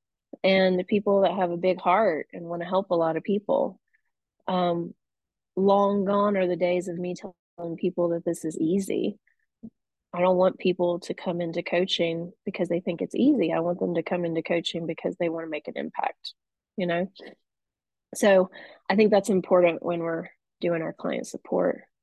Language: English